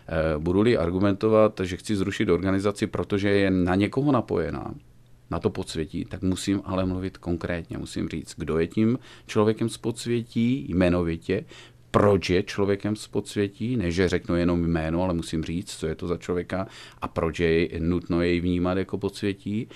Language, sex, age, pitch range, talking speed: Czech, male, 40-59, 85-110 Hz, 165 wpm